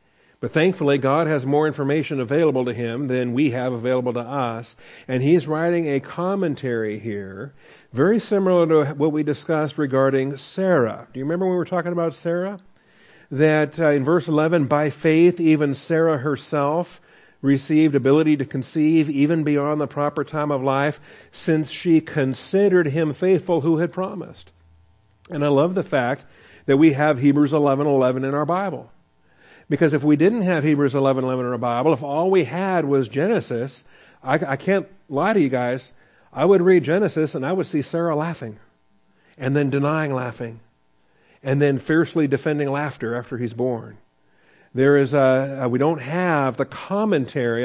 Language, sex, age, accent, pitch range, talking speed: English, male, 50-69, American, 130-160 Hz, 170 wpm